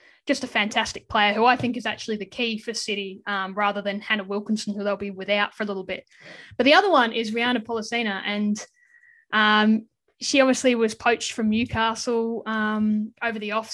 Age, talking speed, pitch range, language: 10-29, 195 wpm, 205-240 Hz, English